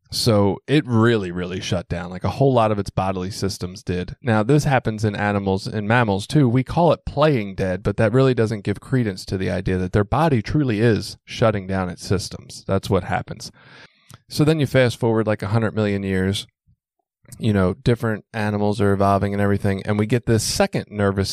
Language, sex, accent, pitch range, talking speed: English, male, American, 95-120 Hz, 205 wpm